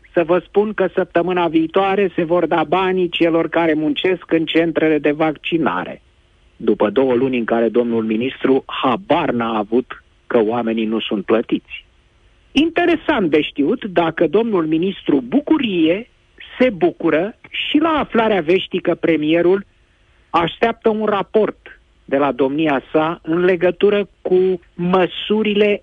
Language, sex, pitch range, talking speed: Romanian, male, 140-200 Hz, 130 wpm